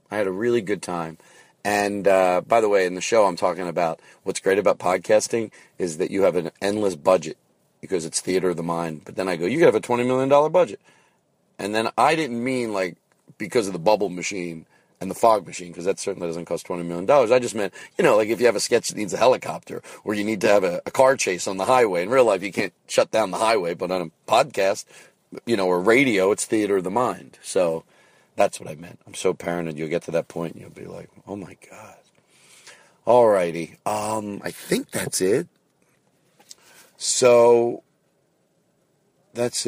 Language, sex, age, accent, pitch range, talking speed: English, male, 40-59, American, 90-120 Hz, 220 wpm